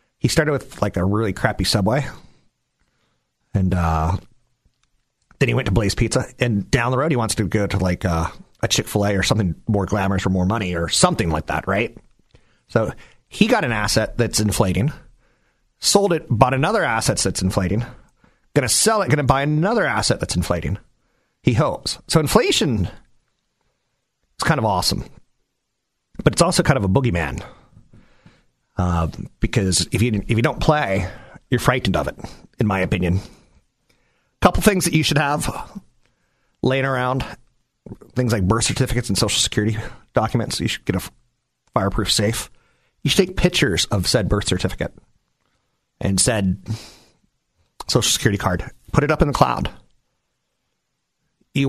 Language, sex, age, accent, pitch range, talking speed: English, male, 40-59, American, 95-130 Hz, 160 wpm